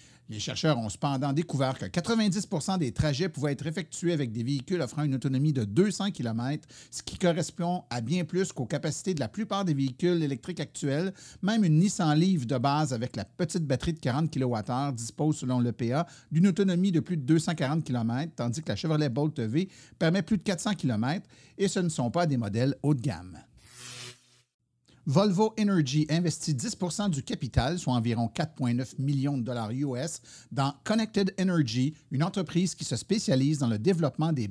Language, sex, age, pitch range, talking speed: French, male, 50-69, 130-170 Hz, 185 wpm